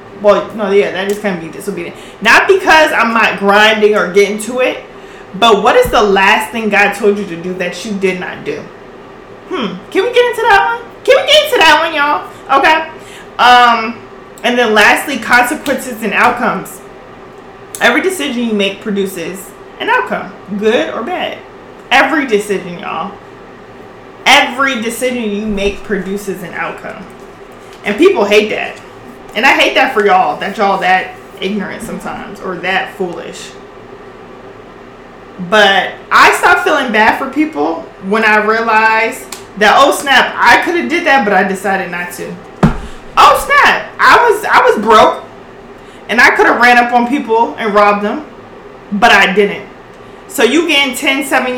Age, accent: 20-39, American